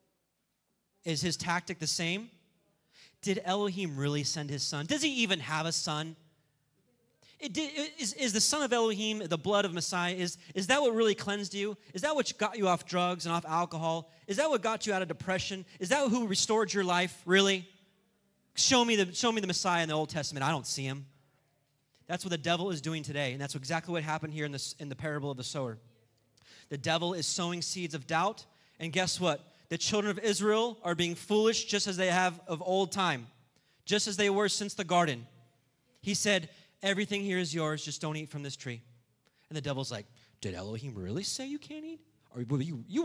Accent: American